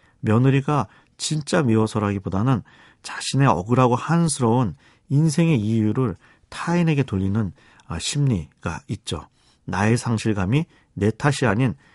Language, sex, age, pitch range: Korean, male, 40-59, 100-140 Hz